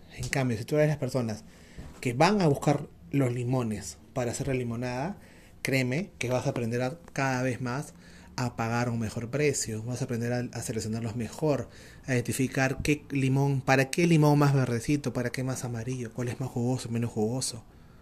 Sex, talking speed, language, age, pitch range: male, 190 wpm, Spanish, 30-49, 120-140 Hz